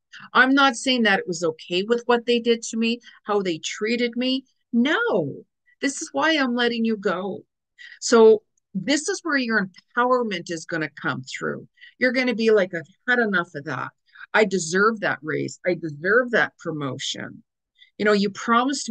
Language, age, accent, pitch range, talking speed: English, 50-69, American, 180-250 Hz, 185 wpm